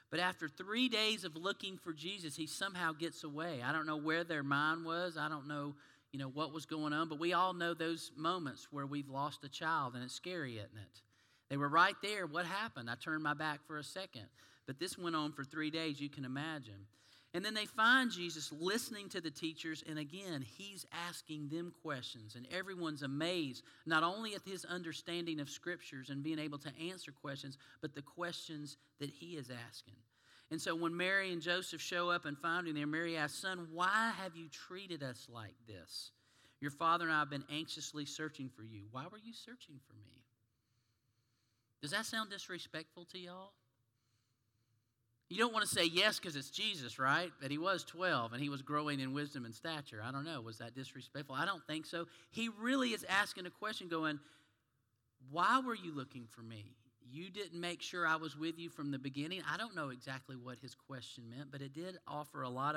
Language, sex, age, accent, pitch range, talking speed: English, male, 40-59, American, 130-175 Hz, 210 wpm